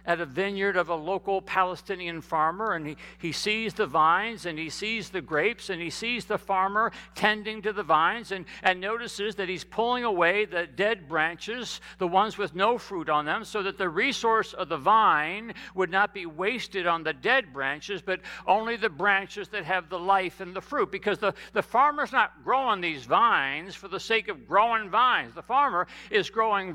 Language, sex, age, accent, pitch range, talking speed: English, male, 60-79, American, 160-220 Hz, 200 wpm